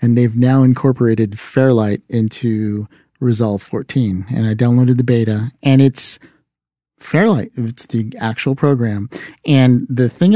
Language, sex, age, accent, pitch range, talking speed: English, male, 50-69, American, 115-135 Hz, 135 wpm